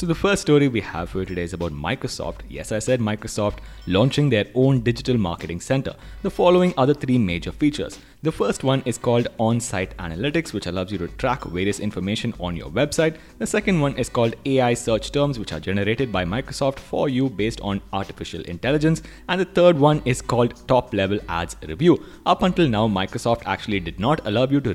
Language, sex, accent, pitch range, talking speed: English, male, Indian, 100-135 Hz, 205 wpm